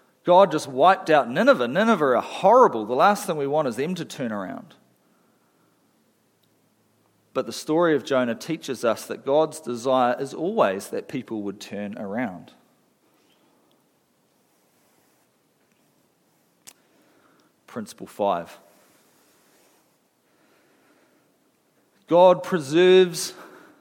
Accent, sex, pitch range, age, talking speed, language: Australian, male, 115-155 Hz, 40-59, 100 wpm, English